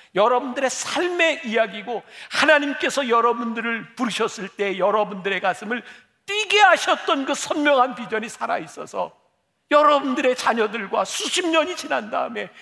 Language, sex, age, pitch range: Korean, male, 50-69, 195-305 Hz